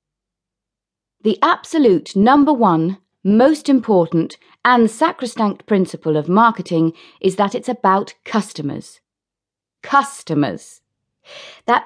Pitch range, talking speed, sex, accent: 170-240 Hz, 90 wpm, female, British